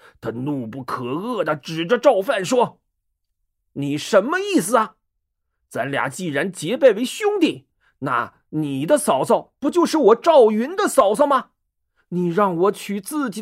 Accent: native